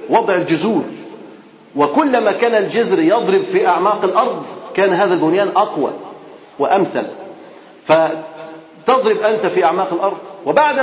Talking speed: 110 wpm